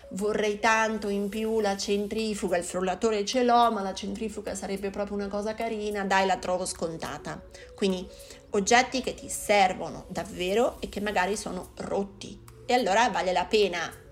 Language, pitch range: Italian, 190-230 Hz